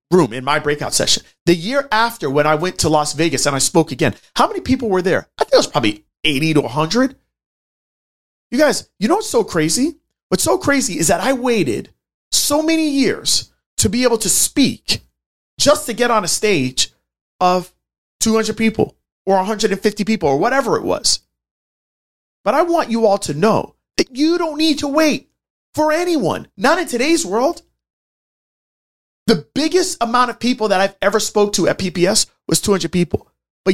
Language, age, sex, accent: English, 30-49, male, American